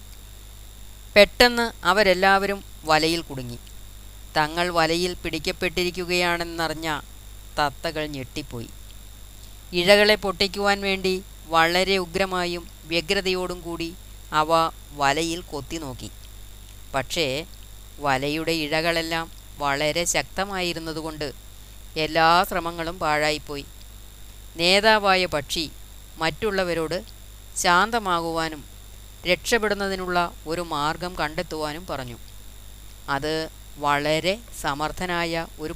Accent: native